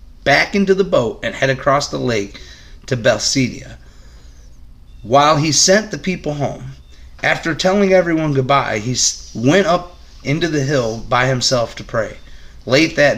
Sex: male